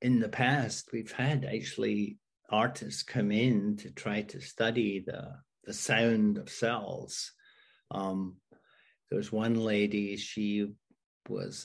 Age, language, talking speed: 50-69, English, 125 wpm